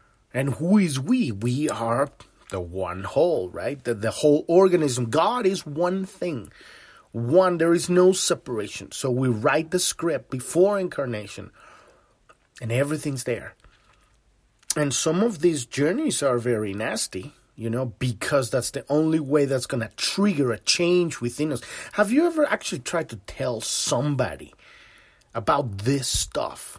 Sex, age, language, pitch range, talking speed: male, 30-49, English, 125-185 Hz, 150 wpm